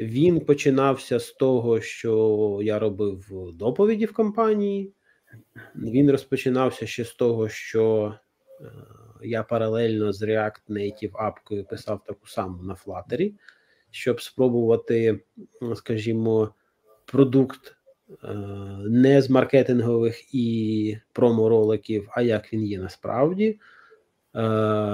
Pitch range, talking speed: 105-125 Hz, 100 wpm